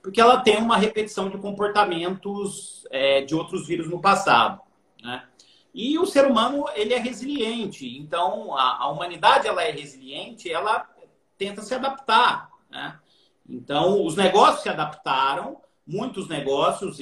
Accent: Brazilian